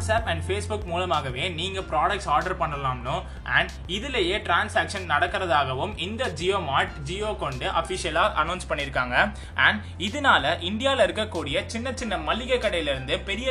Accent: native